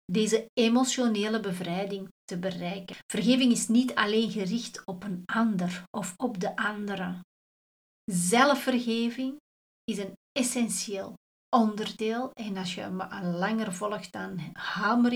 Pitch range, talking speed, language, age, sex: 190-230 Hz, 120 wpm, Dutch, 40-59, female